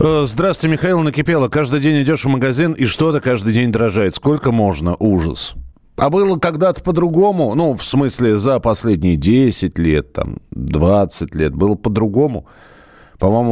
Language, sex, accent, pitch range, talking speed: Russian, male, native, 95-140 Hz, 145 wpm